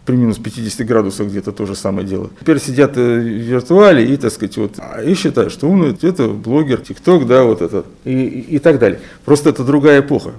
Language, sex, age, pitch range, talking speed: Russian, male, 40-59, 110-145 Hz, 195 wpm